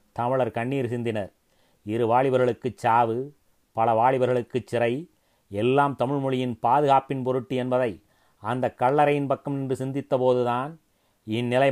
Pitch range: 120-140 Hz